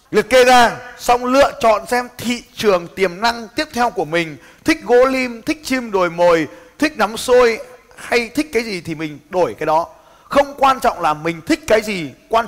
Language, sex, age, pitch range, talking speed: Vietnamese, male, 20-39, 155-245 Hz, 205 wpm